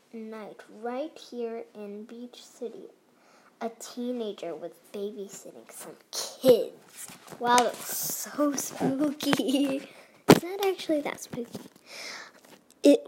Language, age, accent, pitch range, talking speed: English, 10-29, American, 225-290 Hz, 100 wpm